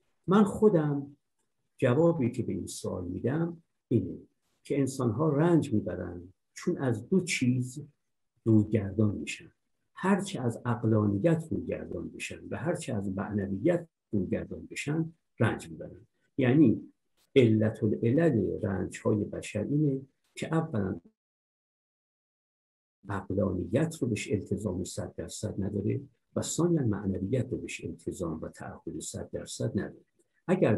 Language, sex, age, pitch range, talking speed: Persian, male, 50-69, 105-150 Hz, 115 wpm